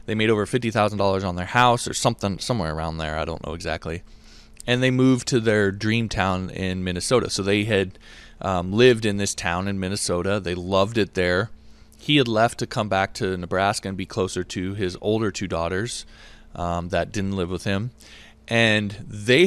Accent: American